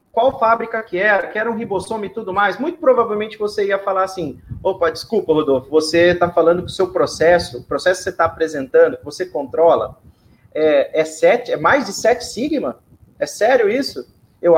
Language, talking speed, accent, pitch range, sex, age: Portuguese, 200 wpm, Brazilian, 180-240 Hz, male, 30-49